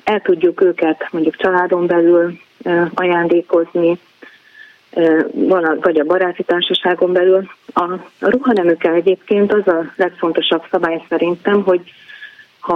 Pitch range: 160-190 Hz